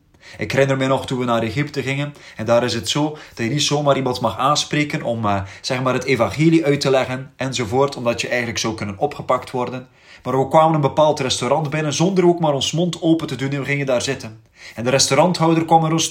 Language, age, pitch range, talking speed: Dutch, 30-49, 130-195 Hz, 240 wpm